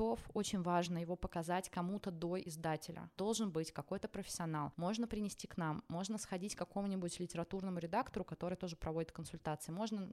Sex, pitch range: female, 175-225 Hz